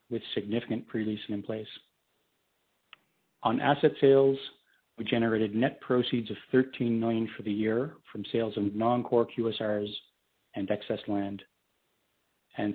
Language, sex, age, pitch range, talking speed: English, male, 40-59, 105-120 Hz, 125 wpm